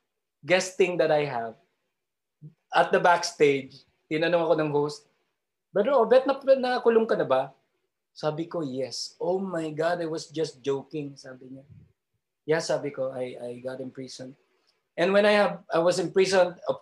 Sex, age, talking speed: male, 20-39, 180 wpm